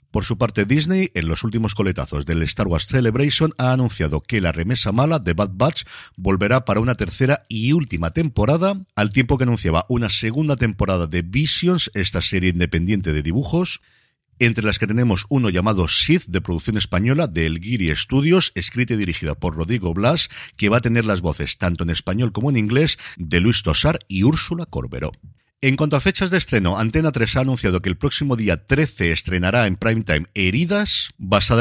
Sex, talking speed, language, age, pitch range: male, 190 wpm, Spanish, 50-69, 90-130 Hz